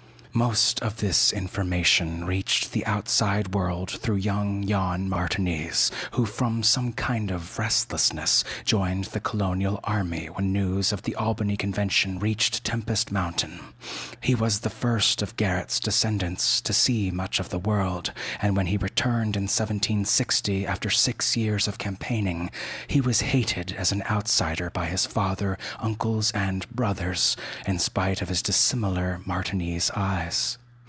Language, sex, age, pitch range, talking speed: English, male, 30-49, 95-115 Hz, 145 wpm